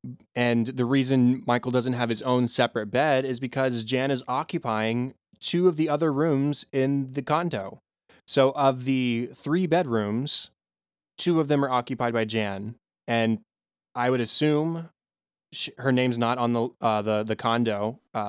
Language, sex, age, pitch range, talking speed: English, male, 20-39, 115-145 Hz, 160 wpm